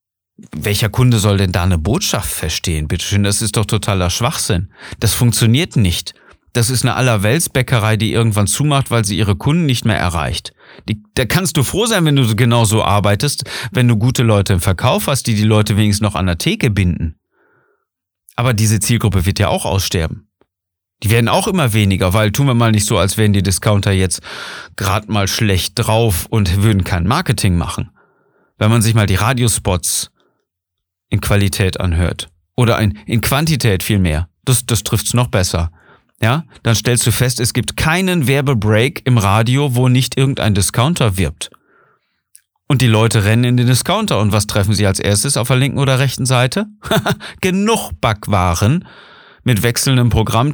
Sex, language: male, German